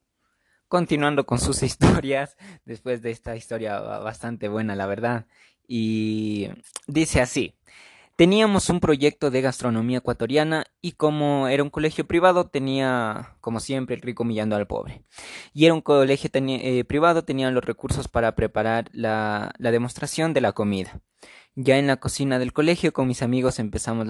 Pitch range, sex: 115-145 Hz, male